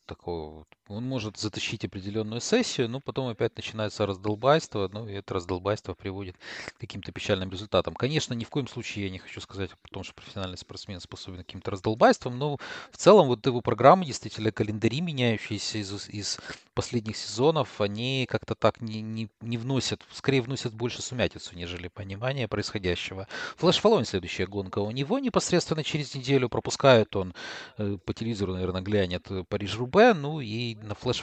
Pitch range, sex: 100-125 Hz, male